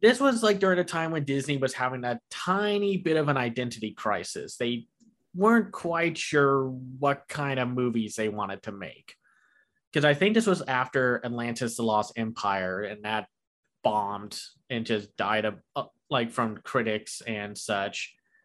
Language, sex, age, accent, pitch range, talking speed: English, male, 20-39, American, 120-165 Hz, 170 wpm